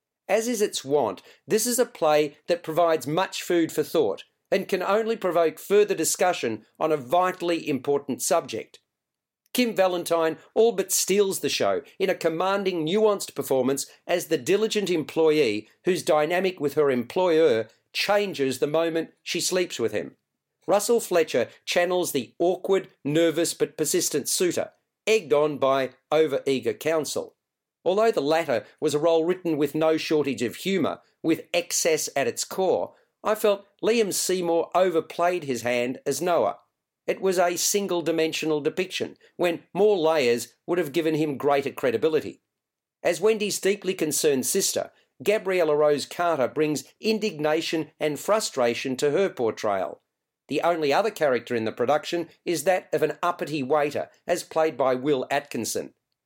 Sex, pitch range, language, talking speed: male, 150-195 Hz, English, 150 wpm